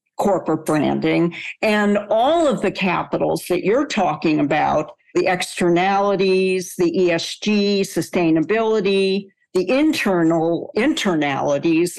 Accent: American